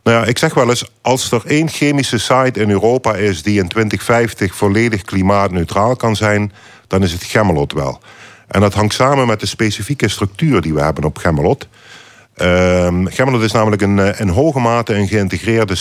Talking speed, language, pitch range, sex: 180 wpm, Dutch, 90-115 Hz, male